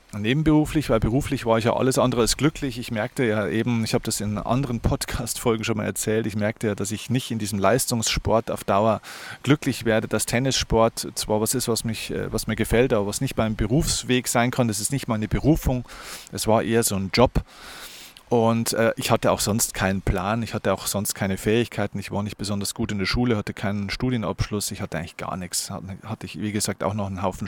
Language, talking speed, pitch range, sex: German, 225 wpm, 105-125 Hz, male